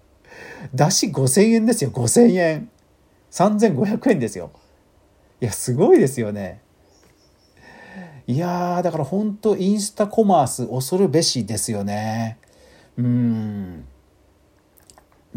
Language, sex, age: Japanese, male, 40-59